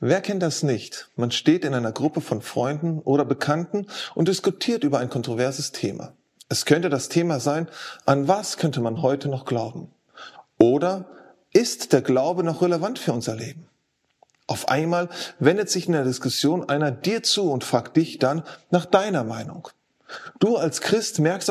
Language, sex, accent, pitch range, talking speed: German, male, German, 140-185 Hz, 170 wpm